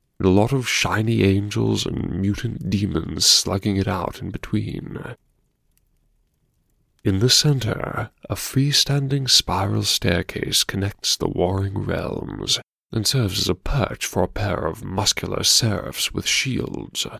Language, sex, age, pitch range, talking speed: English, male, 30-49, 95-130 Hz, 135 wpm